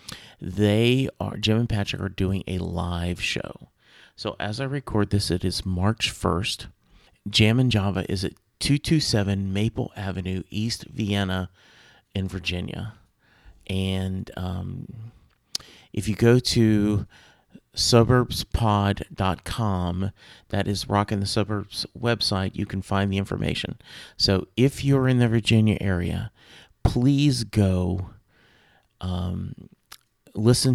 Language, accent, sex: English, American, male